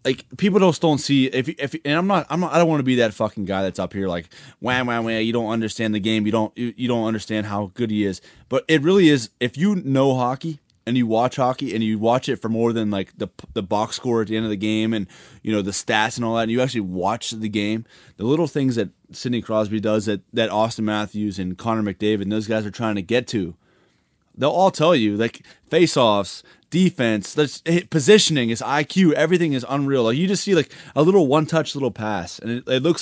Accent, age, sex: American, 20-39, male